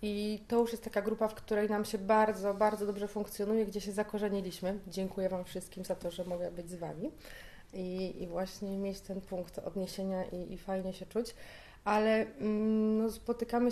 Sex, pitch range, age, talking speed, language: female, 200-235 Hz, 30-49, 180 wpm, Polish